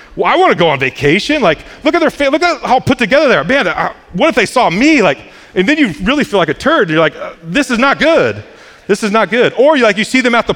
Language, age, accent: English, 30-49, American